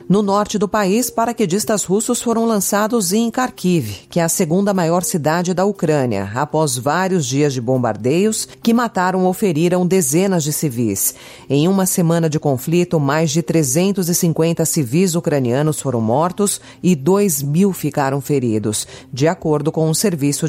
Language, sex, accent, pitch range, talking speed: Portuguese, female, Brazilian, 145-215 Hz, 150 wpm